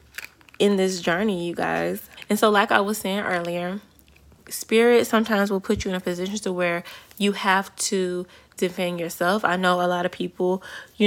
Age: 20-39